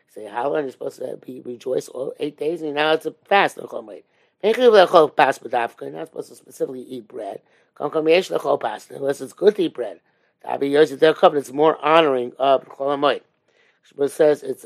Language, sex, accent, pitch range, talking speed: English, male, American, 130-175 Hz, 155 wpm